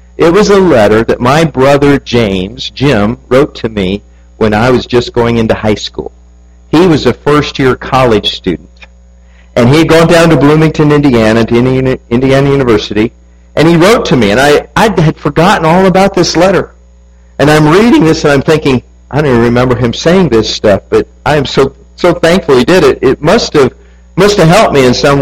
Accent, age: American, 50-69